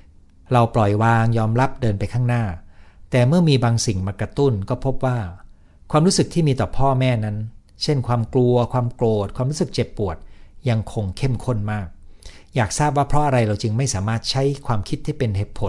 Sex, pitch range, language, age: male, 95-130 Hz, Thai, 60-79